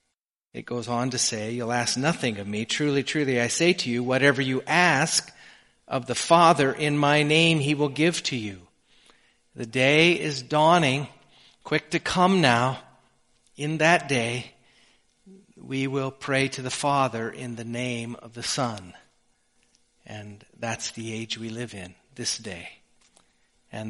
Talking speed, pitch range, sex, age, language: 160 wpm, 120-150 Hz, male, 40-59, English